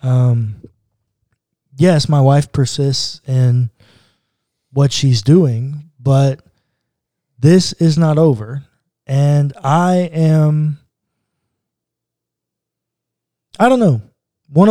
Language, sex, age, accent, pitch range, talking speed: English, male, 20-39, American, 125-155 Hz, 85 wpm